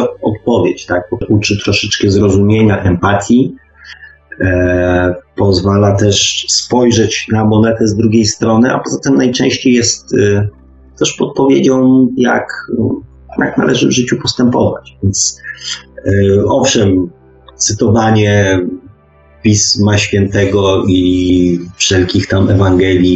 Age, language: 30-49, Polish